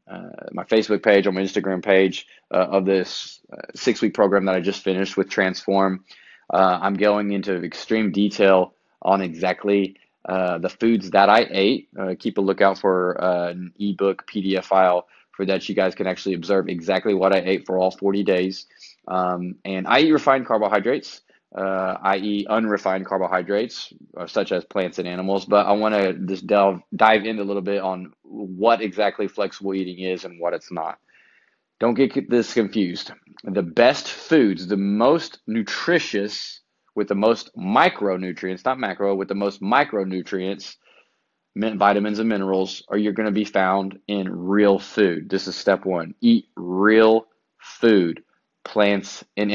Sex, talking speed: male, 165 wpm